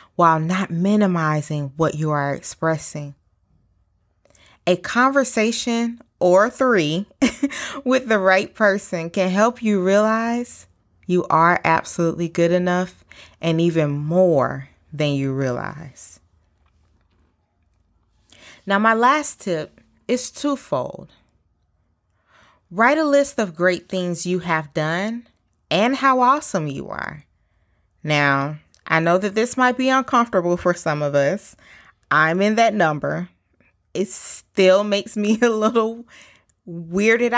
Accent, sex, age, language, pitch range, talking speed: American, female, 20-39, English, 150-230 Hz, 115 wpm